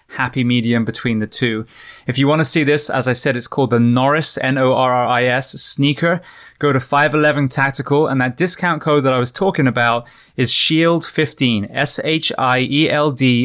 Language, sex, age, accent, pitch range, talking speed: English, male, 20-39, British, 125-155 Hz, 165 wpm